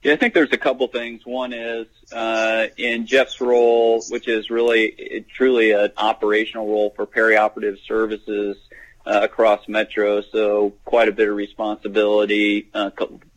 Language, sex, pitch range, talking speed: English, male, 105-110 Hz, 160 wpm